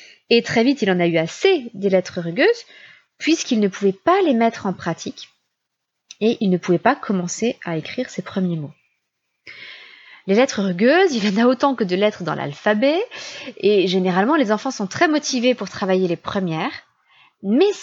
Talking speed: 185 wpm